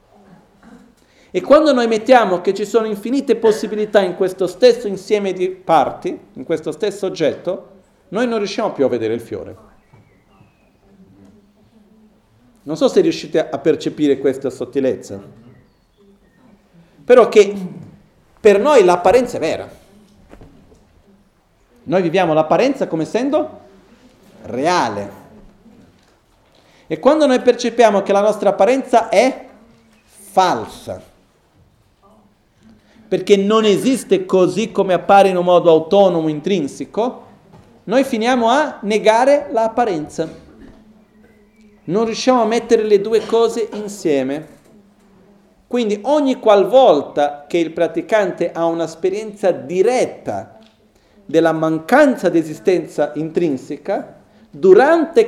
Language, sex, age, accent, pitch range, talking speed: Italian, male, 40-59, native, 165-225 Hz, 105 wpm